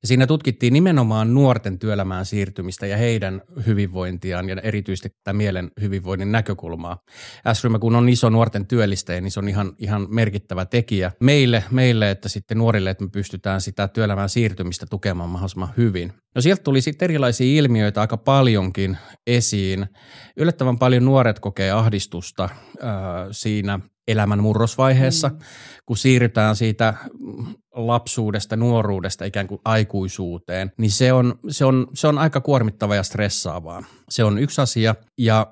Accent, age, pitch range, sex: native, 30-49, 95-120 Hz, male